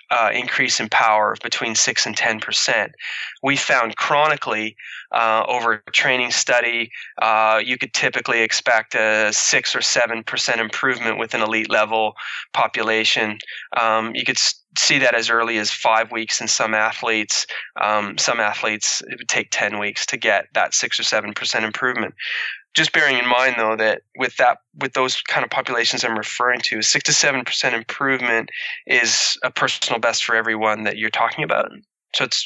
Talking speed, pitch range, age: 170 wpm, 110-140 Hz, 20-39